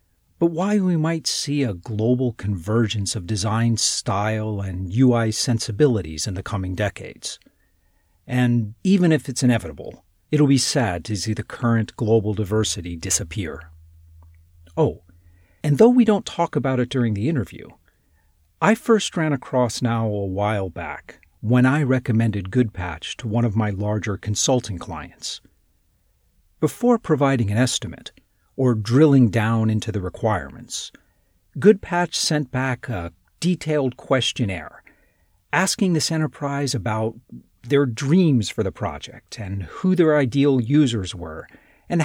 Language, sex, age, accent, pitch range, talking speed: English, male, 40-59, American, 95-140 Hz, 135 wpm